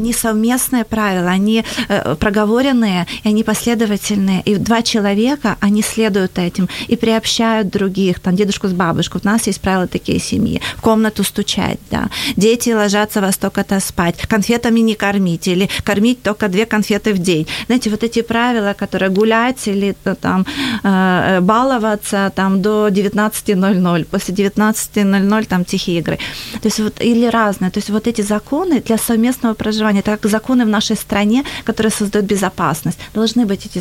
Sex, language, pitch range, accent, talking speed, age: female, Ukrainian, 195-225 Hz, native, 160 wpm, 30-49